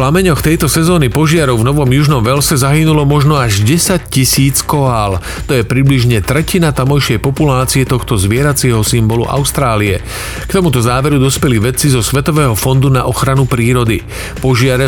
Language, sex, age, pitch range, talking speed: Slovak, male, 40-59, 120-145 Hz, 150 wpm